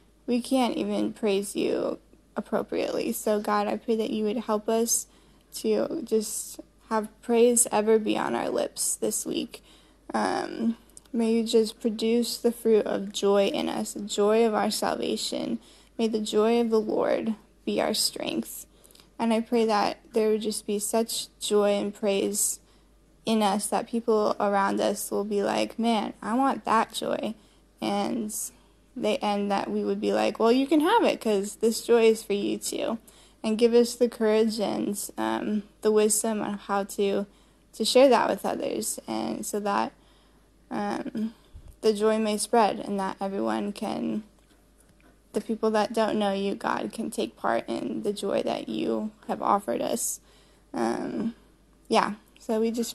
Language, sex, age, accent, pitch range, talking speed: English, female, 10-29, American, 205-230 Hz, 170 wpm